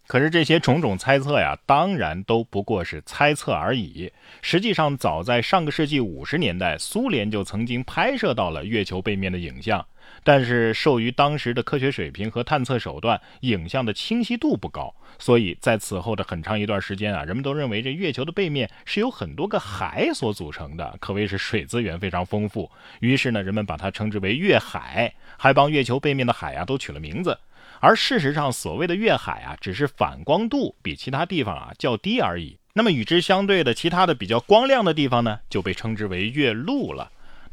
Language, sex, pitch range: Chinese, male, 100-150 Hz